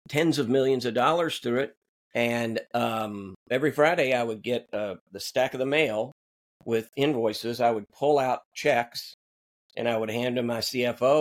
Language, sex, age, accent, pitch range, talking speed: English, male, 50-69, American, 110-140 Hz, 180 wpm